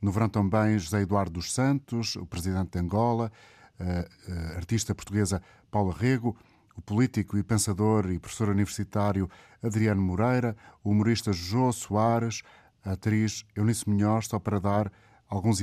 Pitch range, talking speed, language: 100-115 Hz, 140 wpm, Portuguese